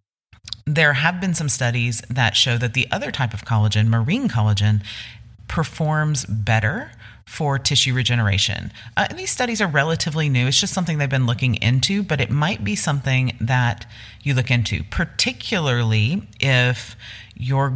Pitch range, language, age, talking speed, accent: 110-130 Hz, English, 30-49, 155 wpm, American